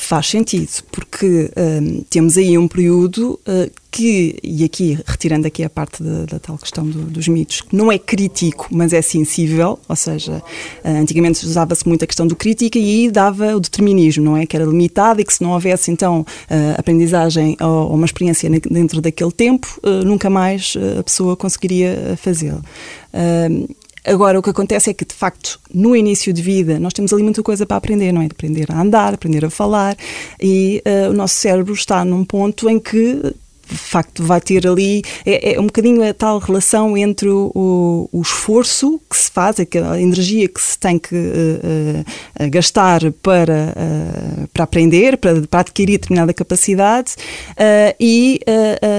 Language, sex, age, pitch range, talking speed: Portuguese, female, 20-39, 165-205 Hz, 185 wpm